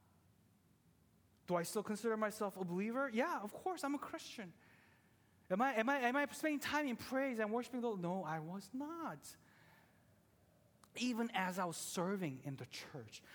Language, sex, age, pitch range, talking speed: English, male, 30-49, 170-240 Hz, 170 wpm